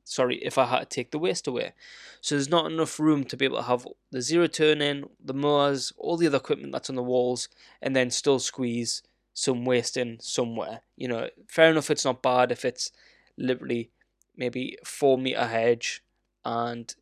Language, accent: English, British